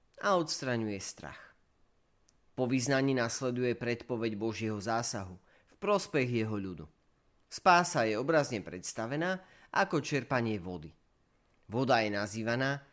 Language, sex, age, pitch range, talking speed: Slovak, male, 40-59, 100-135 Hz, 105 wpm